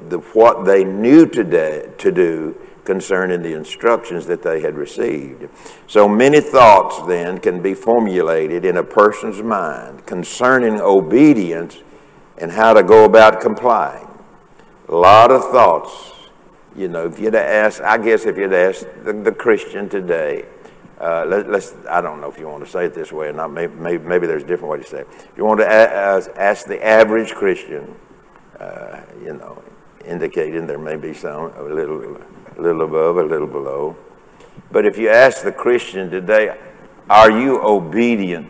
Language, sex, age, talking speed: English, male, 60-79, 175 wpm